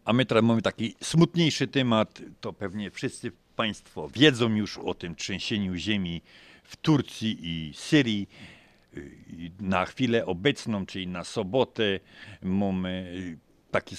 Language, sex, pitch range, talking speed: Polish, male, 95-130 Hz, 125 wpm